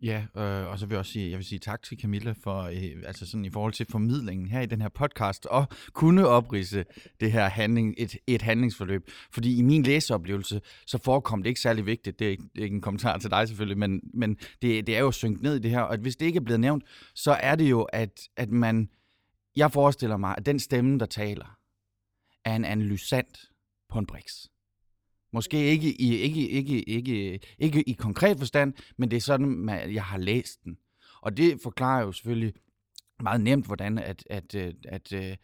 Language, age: Danish, 30-49